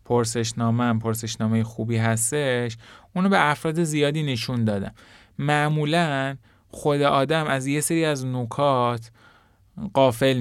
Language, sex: Persian, male